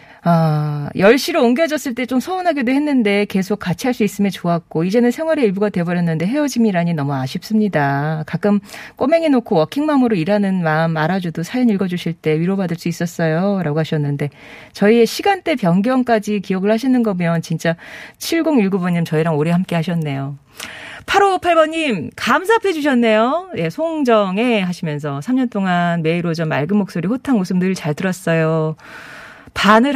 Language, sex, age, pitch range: Korean, female, 40-59, 165-235 Hz